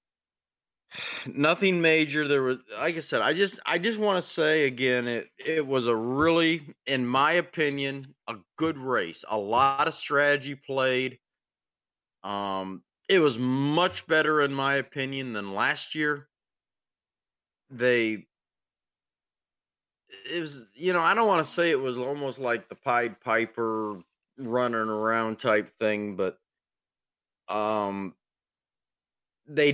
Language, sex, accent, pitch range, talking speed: English, male, American, 105-140 Hz, 135 wpm